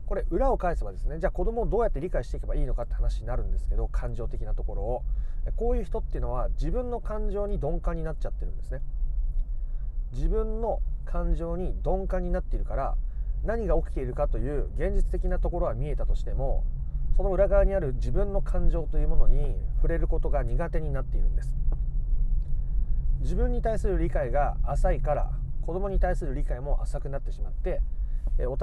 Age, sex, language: 30-49, male, Japanese